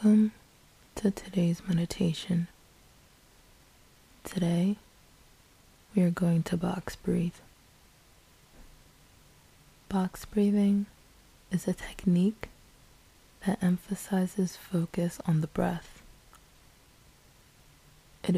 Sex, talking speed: female, 75 wpm